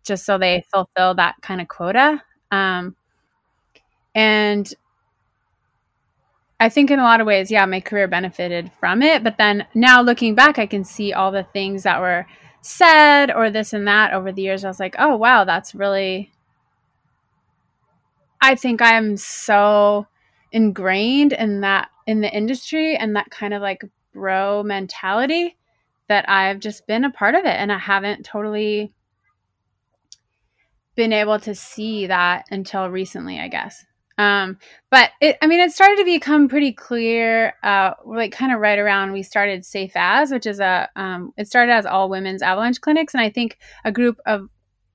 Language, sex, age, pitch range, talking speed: English, female, 20-39, 195-245 Hz, 170 wpm